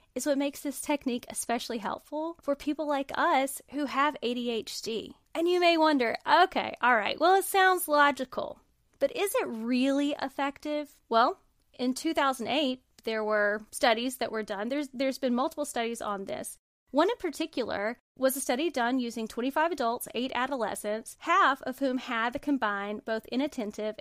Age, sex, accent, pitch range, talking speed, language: 20-39, female, American, 235-305 Hz, 165 wpm, English